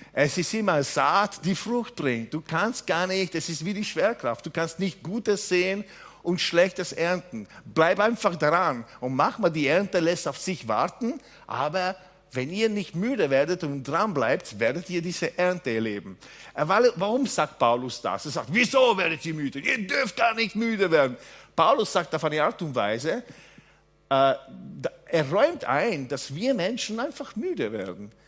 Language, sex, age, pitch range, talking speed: German, male, 50-69, 145-200 Hz, 175 wpm